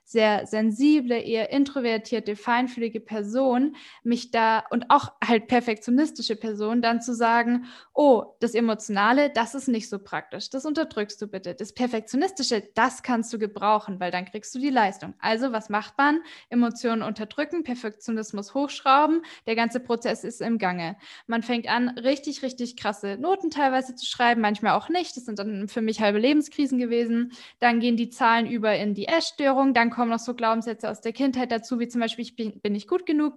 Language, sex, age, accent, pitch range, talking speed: German, female, 10-29, German, 215-260 Hz, 180 wpm